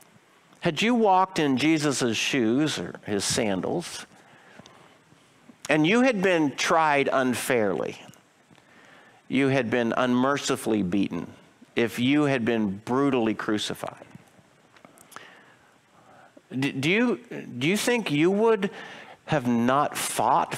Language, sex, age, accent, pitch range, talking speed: English, male, 60-79, American, 120-165 Hz, 100 wpm